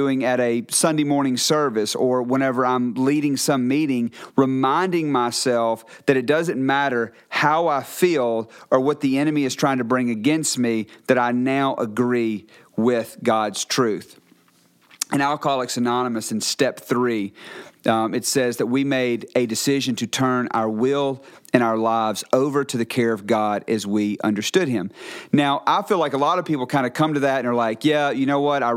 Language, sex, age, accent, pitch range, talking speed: English, male, 40-59, American, 120-145 Hz, 185 wpm